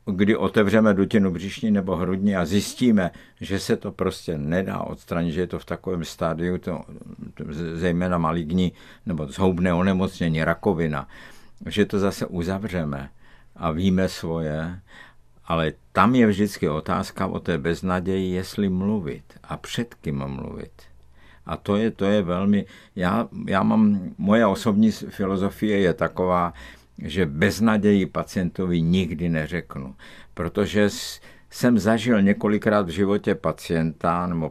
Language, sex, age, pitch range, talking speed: Czech, male, 60-79, 80-100 Hz, 130 wpm